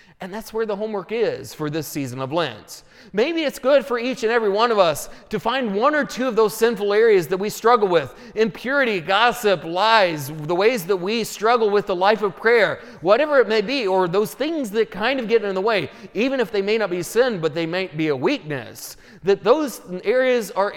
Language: English